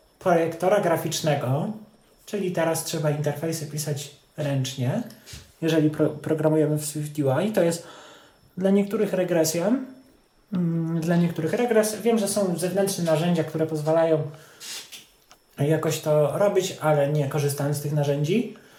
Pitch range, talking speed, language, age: 155-200 Hz, 120 wpm, Polish, 30-49